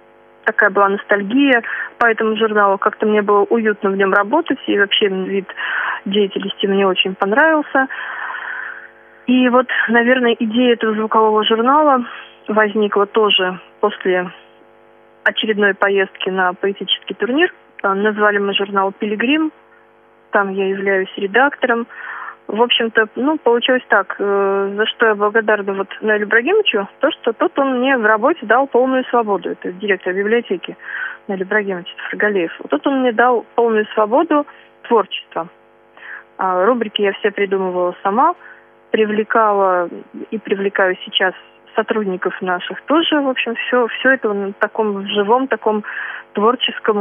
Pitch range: 195-240 Hz